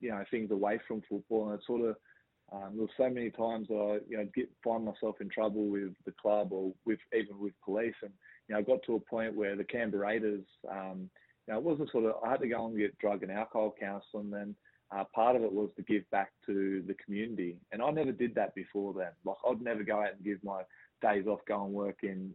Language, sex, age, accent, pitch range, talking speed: English, male, 20-39, Australian, 100-115 Hz, 250 wpm